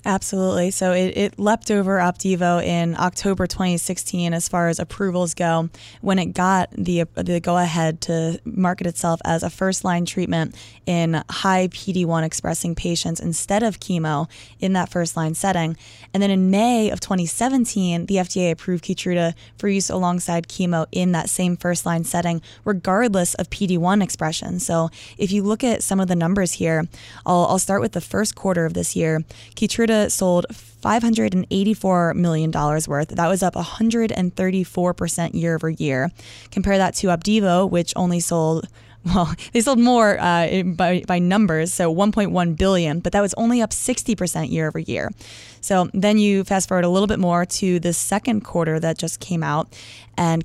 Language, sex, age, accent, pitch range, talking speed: English, female, 20-39, American, 165-195 Hz, 175 wpm